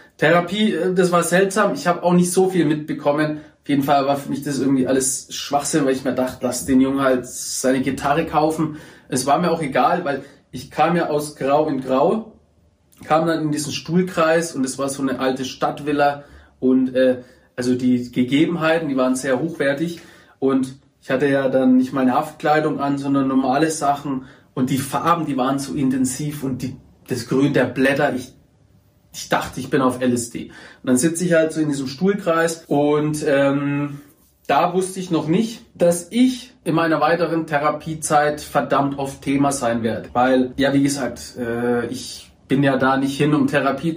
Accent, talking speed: German, 190 wpm